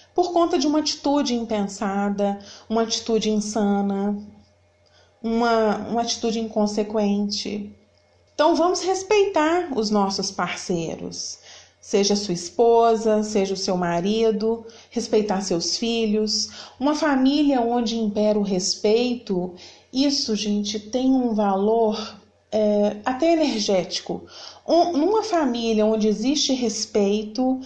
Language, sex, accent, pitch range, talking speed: Portuguese, female, Brazilian, 205-270 Hz, 100 wpm